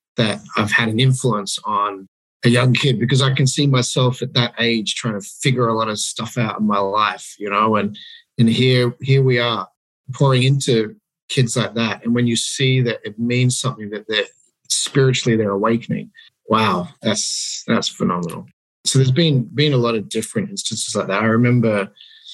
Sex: male